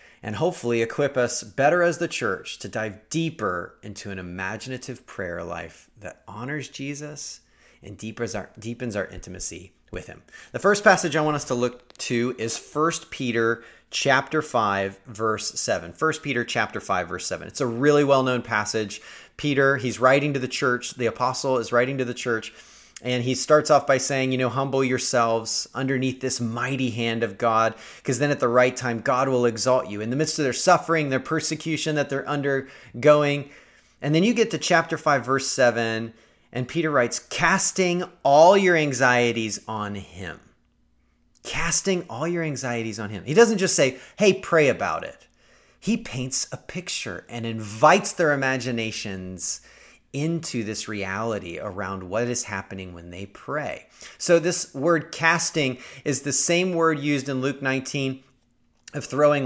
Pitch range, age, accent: 115-150 Hz, 30-49, American